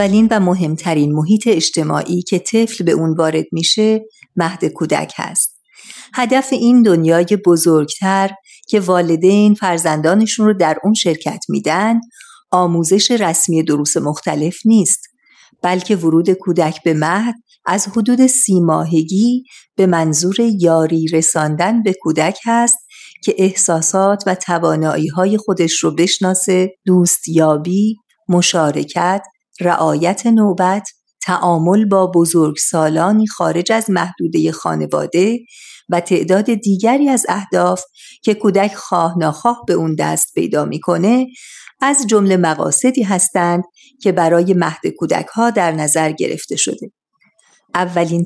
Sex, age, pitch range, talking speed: female, 50-69, 170-220 Hz, 115 wpm